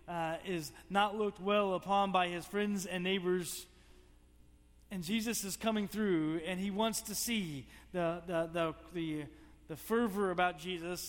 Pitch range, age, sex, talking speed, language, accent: 135-200 Hz, 40-59, male, 155 wpm, English, American